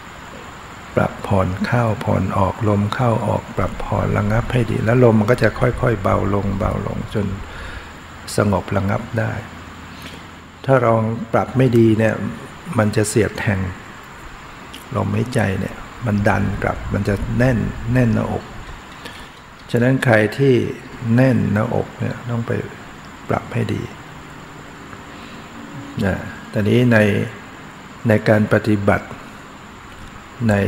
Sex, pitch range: male, 95-115 Hz